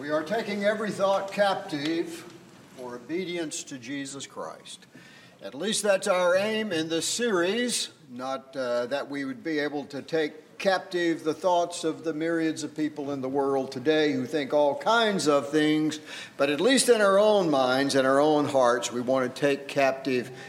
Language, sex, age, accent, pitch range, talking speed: English, male, 60-79, American, 140-180 Hz, 180 wpm